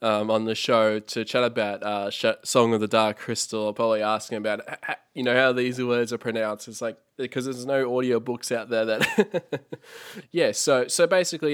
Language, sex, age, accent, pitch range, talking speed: English, male, 20-39, Australian, 105-115 Hz, 190 wpm